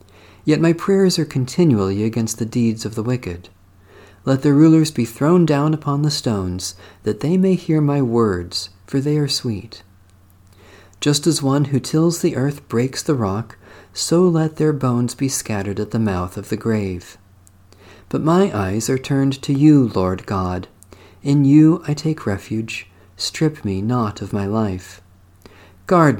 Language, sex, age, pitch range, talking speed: English, male, 40-59, 95-145 Hz, 165 wpm